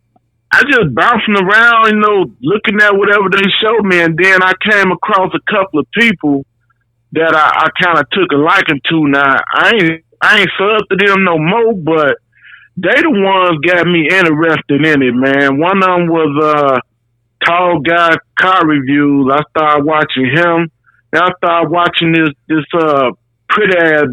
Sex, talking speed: male, 175 wpm